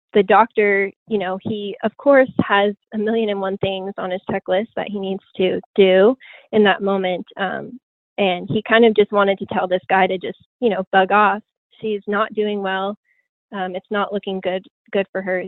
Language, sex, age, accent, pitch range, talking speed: English, female, 10-29, American, 190-215 Hz, 205 wpm